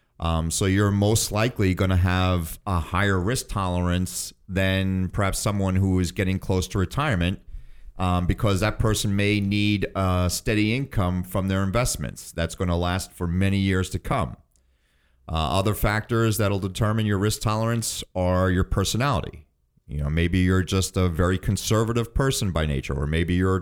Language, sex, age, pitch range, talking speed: English, male, 40-59, 85-105 Hz, 175 wpm